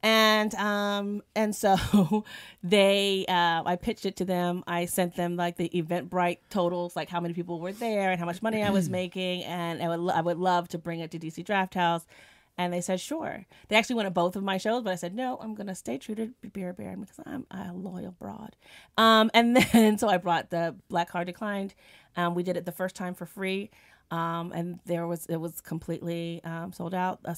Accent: American